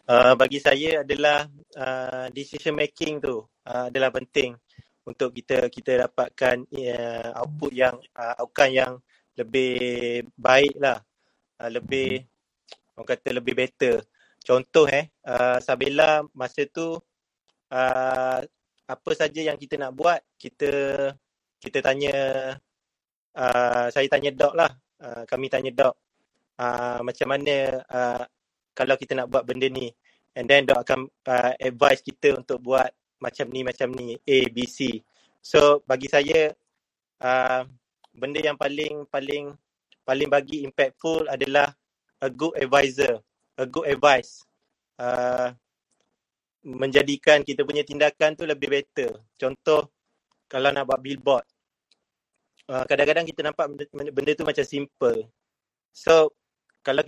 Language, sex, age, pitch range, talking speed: Malay, male, 30-49, 125-145 Hz, 130 wpm